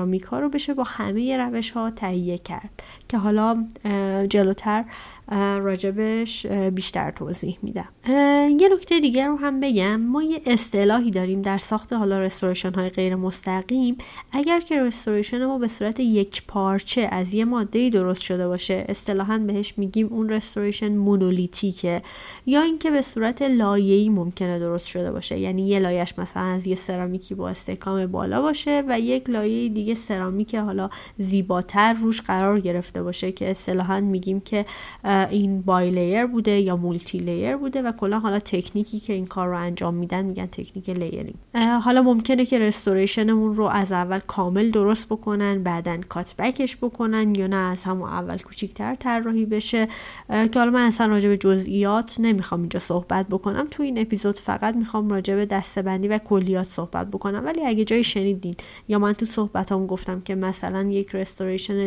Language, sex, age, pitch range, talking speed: Persian, female, 30-49, 190-225 Hz, 160 wpm